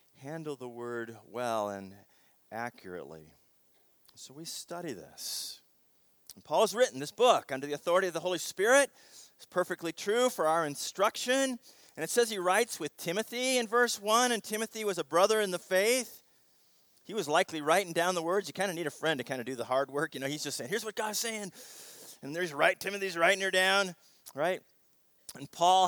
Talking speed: 195 wpm